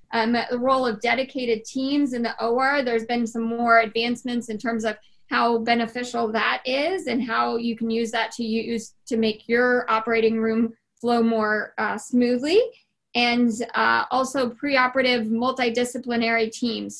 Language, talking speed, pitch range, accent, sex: English, 155 wpm, 225-260 Hz, American, female